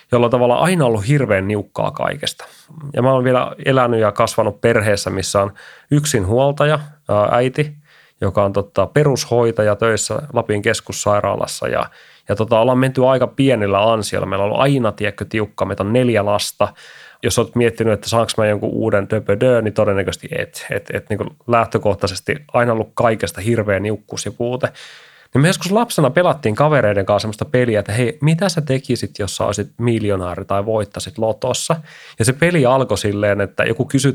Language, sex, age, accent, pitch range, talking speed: Finnish, male, 30-49, native, 105-130 Hz, 170 wpm